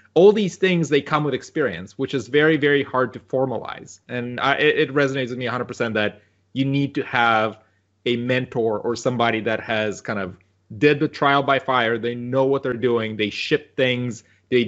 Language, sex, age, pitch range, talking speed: English, male, 30-49, 115-155 Hz, 195 wpm